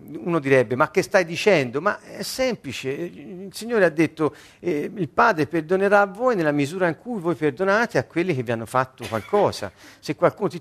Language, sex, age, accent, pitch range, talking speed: Italian, male, 40-59, native, 135-210 Hz, 200 wpm